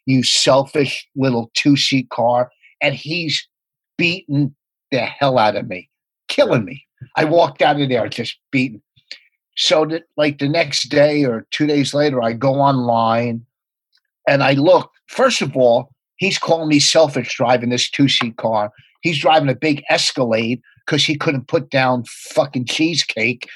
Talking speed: 155 wpm